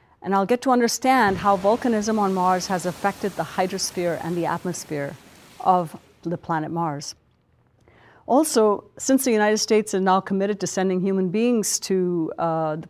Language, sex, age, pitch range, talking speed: English, female, 50-69, 170-210 Hz, 165 wpm